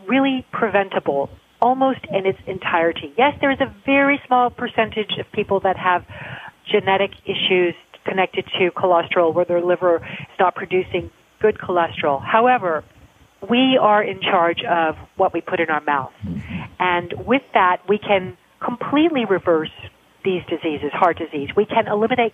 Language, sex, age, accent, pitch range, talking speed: English, female, 40-59, American, 170-210 Hz, 150 wpm